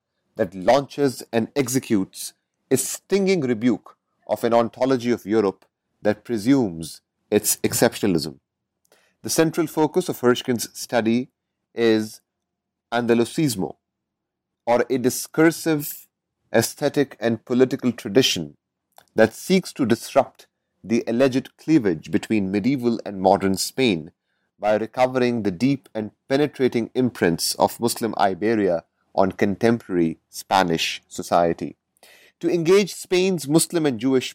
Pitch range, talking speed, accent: 110-145 Hz, 110 wpm, Indian